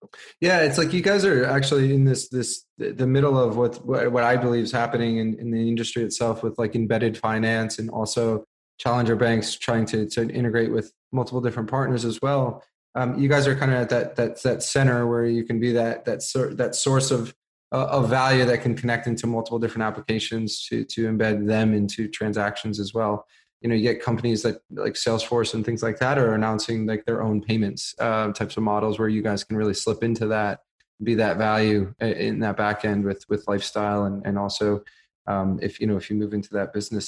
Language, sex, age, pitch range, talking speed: English, male, 20-39, 110-125 Hz, 215 wpm